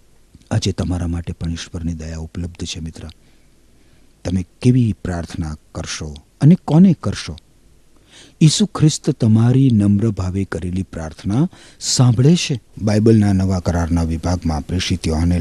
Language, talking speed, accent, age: Gujarati, 115 wpm, native, 50-69